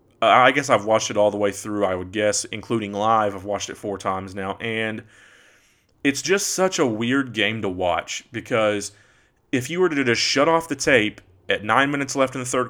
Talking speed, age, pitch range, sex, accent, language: 215 wpm, 30-49, 105-125 Hz, male, American, English